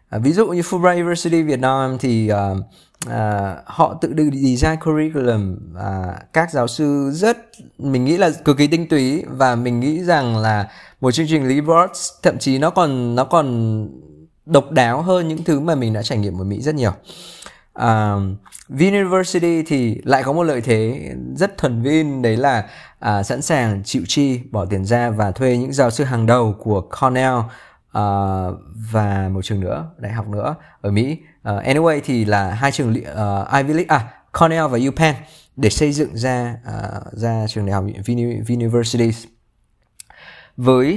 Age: 20-39